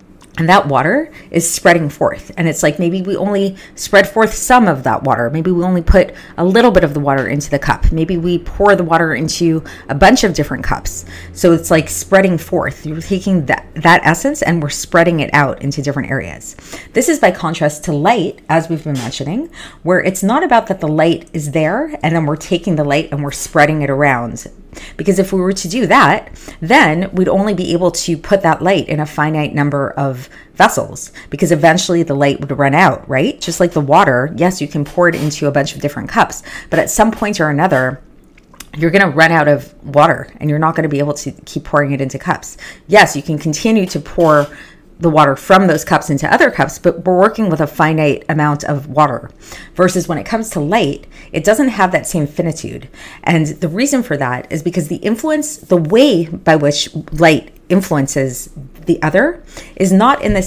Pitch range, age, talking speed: 145-185 Hz, 30-49, 215 wpm